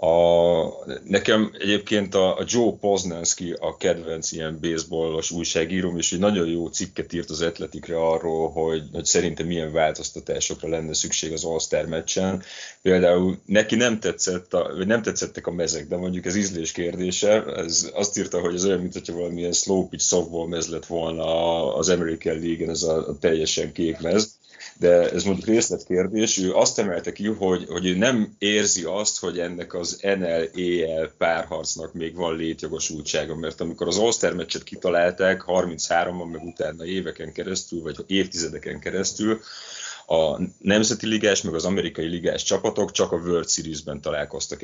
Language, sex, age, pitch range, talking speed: Hungarian, male, 30-49, 80-95 Hz, 155 wpm